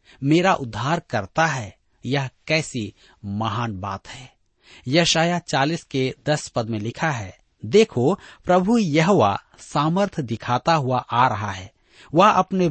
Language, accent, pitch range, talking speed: Hindi, native, 115-170 Hz, 130 wpm